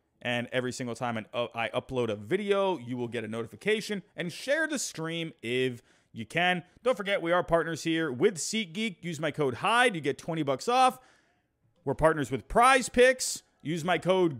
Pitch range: 130-175 Hz